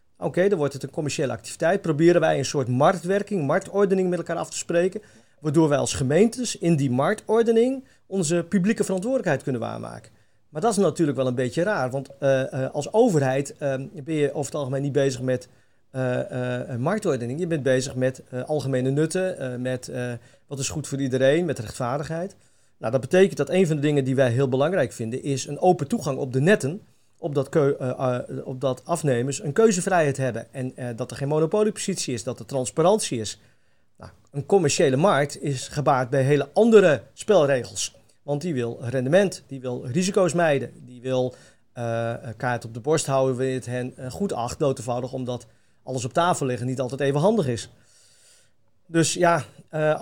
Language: English